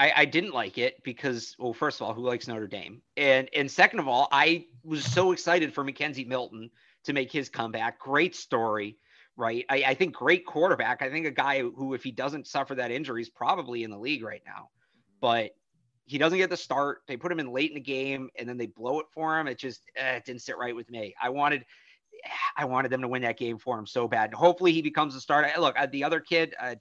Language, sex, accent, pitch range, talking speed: English, male, American, 115-150 Hz, 245 wpm